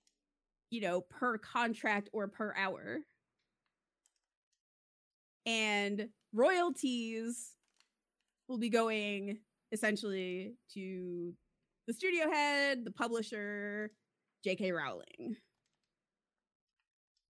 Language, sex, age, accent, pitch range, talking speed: English, female, 20-39, American, 185-245 Hz, 75 wpm